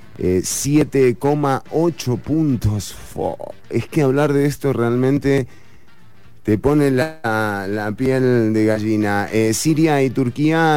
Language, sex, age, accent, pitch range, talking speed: English, male, 30-49, Argentinian, 100-125 Hz, 110 wpm